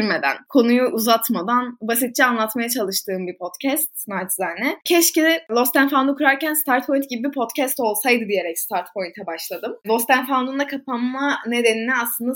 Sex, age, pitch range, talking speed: female, 10-29, 195-280 Hz, 135 wpm